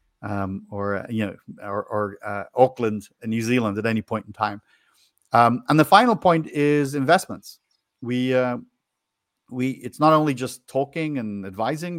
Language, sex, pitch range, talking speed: English, male, 105-130 Hz, 170 wpm